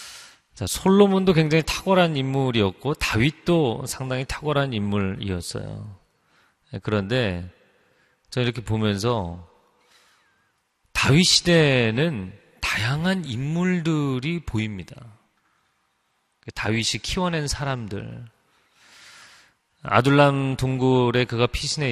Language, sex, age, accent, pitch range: Korean, male, 30-49, native, 100-140 Hz